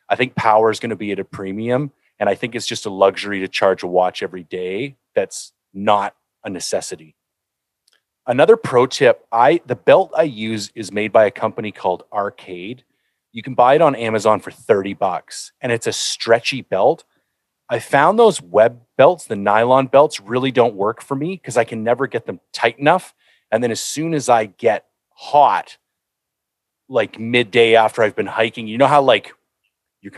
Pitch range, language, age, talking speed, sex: 110-130 Hz, English, 30-49, 190 wpm, male